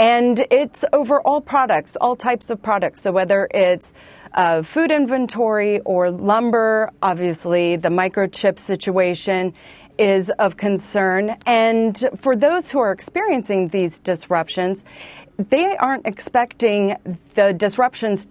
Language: English